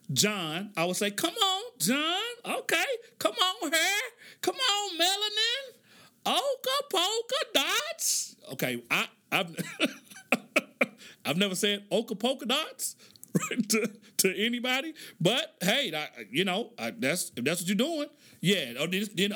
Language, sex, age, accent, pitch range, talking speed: English, male, 40-59, American, 195-320 Hz, 135 wpm